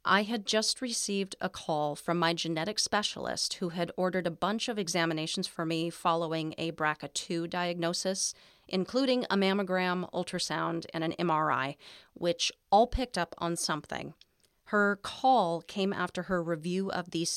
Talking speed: 150 wpm